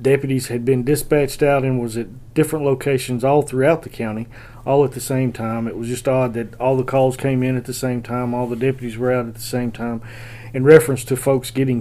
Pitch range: 115-135 Hz